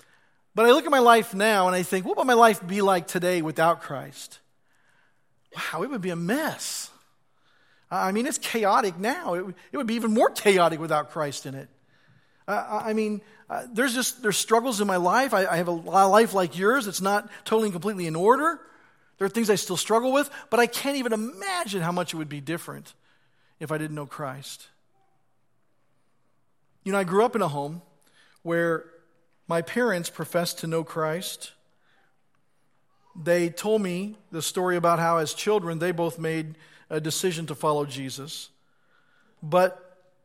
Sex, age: male, 40-59